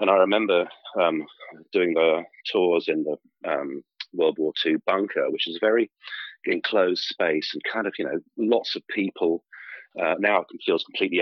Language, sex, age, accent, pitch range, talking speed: English, male, 40-59, British, 325-435 Hz, 175 wpm